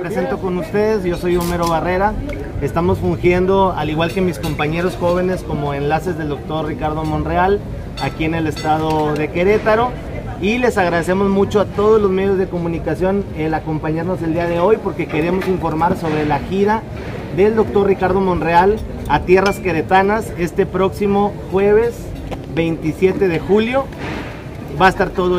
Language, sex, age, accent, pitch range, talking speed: Spanish, male, 30-49, Mexican, 160-195 Hz, 155 wpm